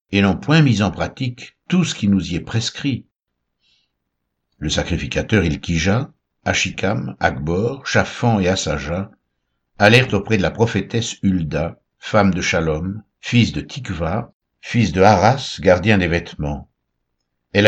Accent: French